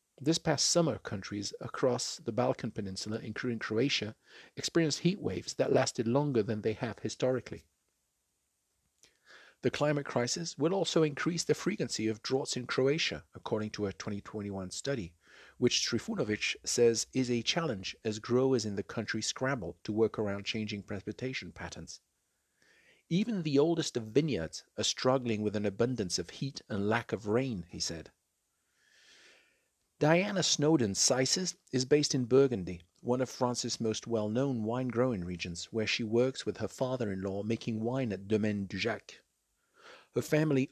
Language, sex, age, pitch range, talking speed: English, male, 50-69, 105-140 Hz, 150 wpm